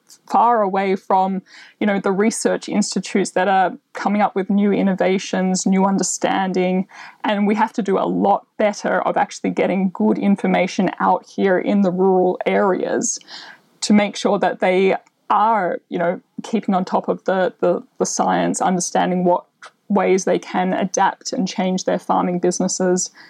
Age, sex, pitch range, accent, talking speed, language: 20-39, female, 185-225 Hz, Australian, 160 wpm, English